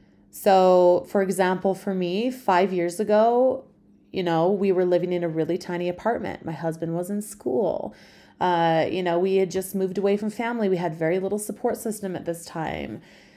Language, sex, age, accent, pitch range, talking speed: English, female, 30-49, American, 175-215 Hz, 190 wpm